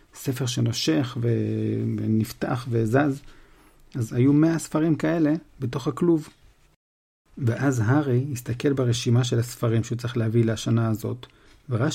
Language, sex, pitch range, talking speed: Hebrew, male, 120-155 Hz, 120 wpm